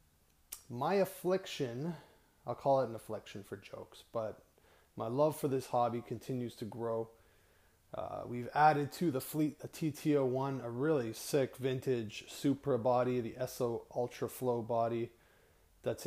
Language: English